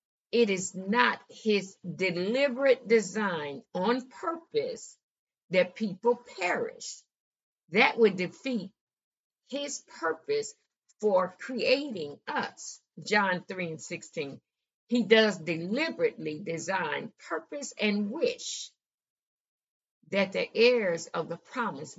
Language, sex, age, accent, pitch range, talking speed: English, female, 50-69, American, 175-255 Hz, 100 wpm